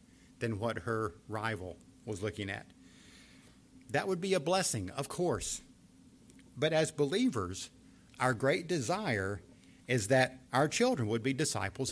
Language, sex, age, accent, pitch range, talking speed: English, male, 50-69, American, 110-145 Hz, 135 wpm